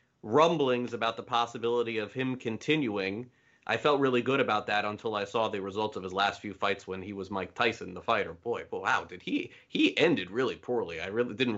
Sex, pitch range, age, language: male, 115-155 Hz, 30-49, English